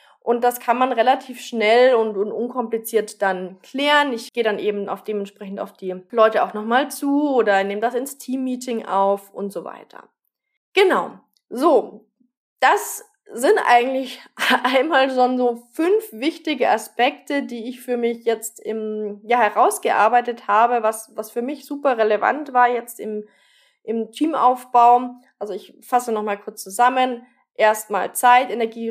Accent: German